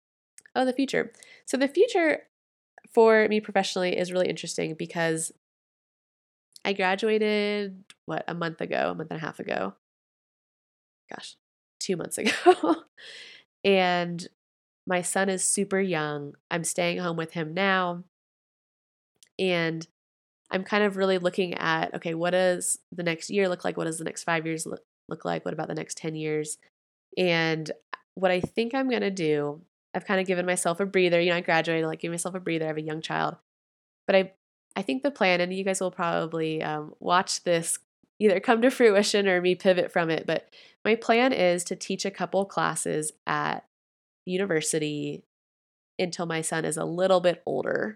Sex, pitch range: female, 165-195 Hz